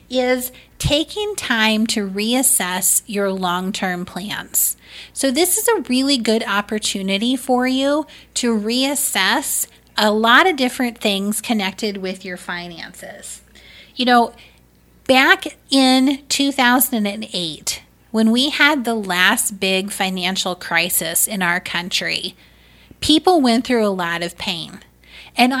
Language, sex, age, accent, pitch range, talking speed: English, female, 30-49, American, 195-265 Hz, 120 wpm